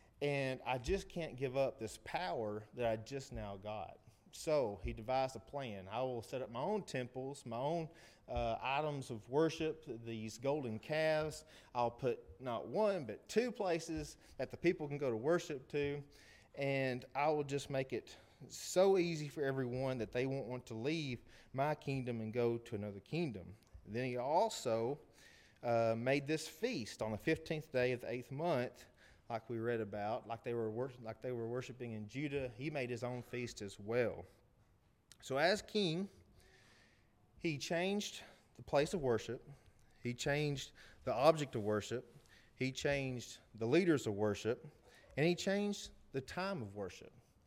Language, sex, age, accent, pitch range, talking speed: English, male, 30-49, American, 115-155 Hz, 170 wpm